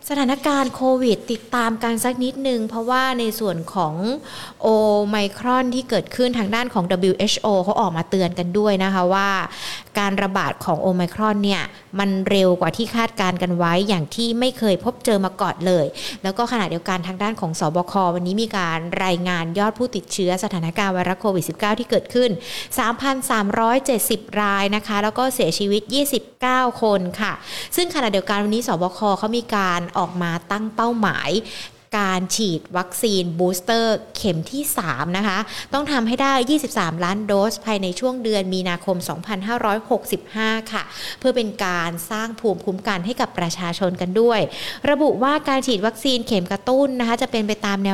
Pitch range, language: 190-240 Hz, Thai